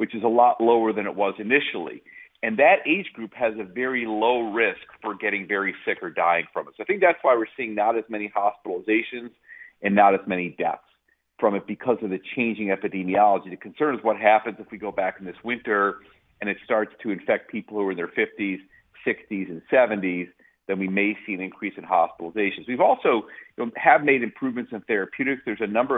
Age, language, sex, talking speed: 40-59, English, male, 215 wpm